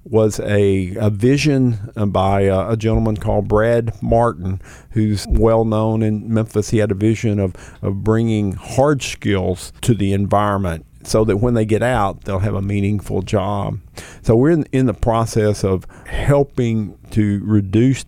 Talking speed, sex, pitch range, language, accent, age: 160 wpm, male, 100-120 Hz, English, American, 50-69